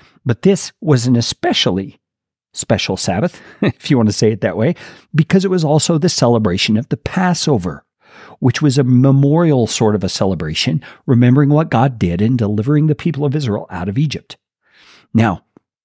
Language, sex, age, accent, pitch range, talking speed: English, male, 50-69, American, 115-155 Hz, 175 wpm